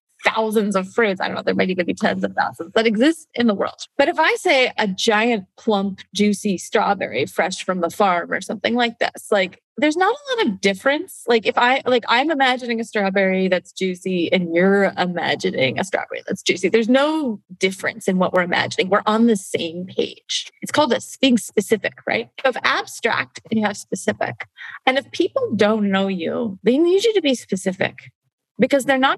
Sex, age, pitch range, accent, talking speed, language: female, 30-49, 185-245 Hz, American, 210 wpm, English